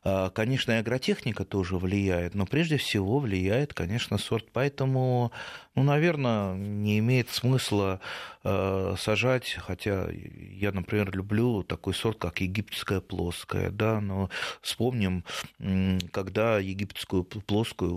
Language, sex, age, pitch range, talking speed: Russian, male, 30-49, 95-115 Hz, 115 wpm